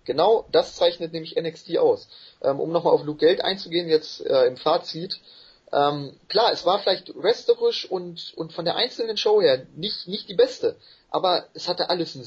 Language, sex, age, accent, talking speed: German, male, 30-49, German, 190 wpm